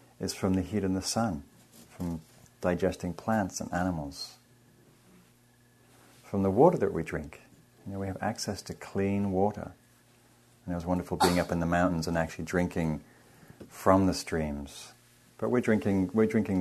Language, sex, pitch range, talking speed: English, male, 80-95 Hz, 165 wpm